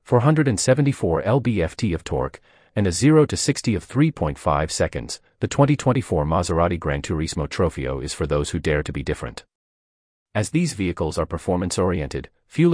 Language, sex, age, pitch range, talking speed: English, male, 40-59, 75-125 Hz, 150 wpm